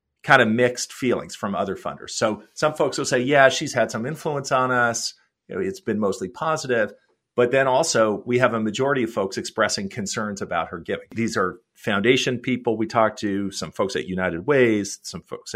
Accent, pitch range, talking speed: American, 110-135 Hz, 195 wpm